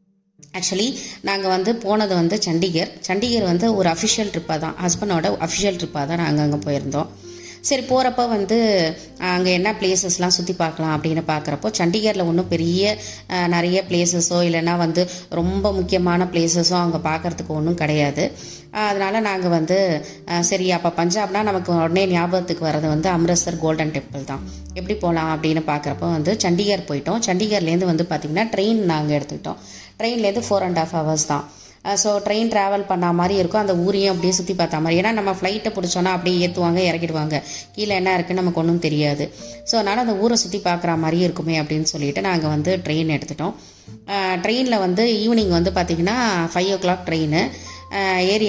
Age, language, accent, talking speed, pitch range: 20-39, Tamil, native, 155 wpm, 160-195 Hz